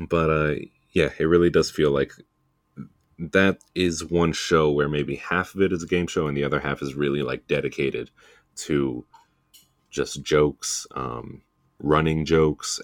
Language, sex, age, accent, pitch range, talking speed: English, male, 30-49, American, 70-85 Hz, 165 wpm